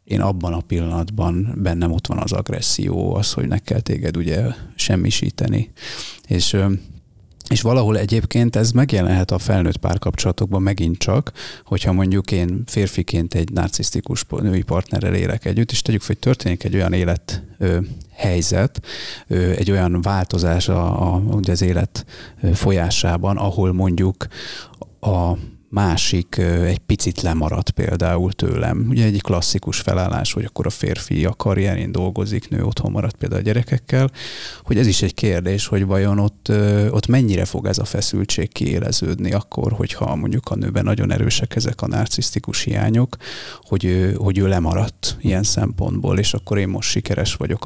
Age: 30-49